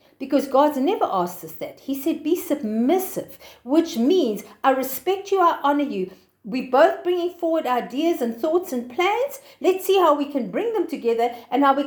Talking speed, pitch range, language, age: 190 wpm, 265-360 Hz, English, 50-69